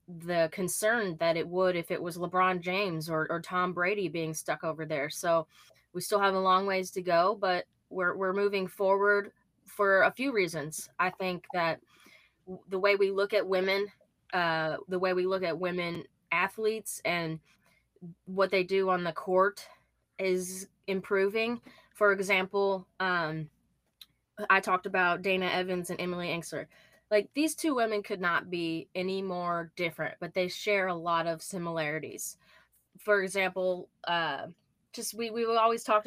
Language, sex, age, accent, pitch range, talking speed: English, female, 20-39, American, 175-200 Hz, 165 wpm